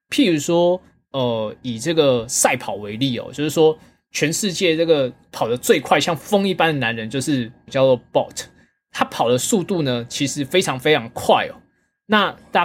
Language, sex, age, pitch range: Chinese, male, 20-39, 125-175 Hz